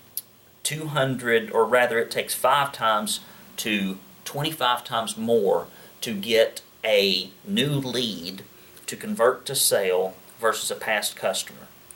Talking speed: 120 wpm